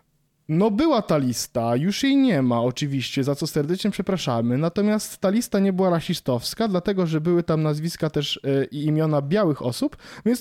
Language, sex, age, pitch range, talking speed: Polish, male, 20-39, 150-185 Hz, 180 wpm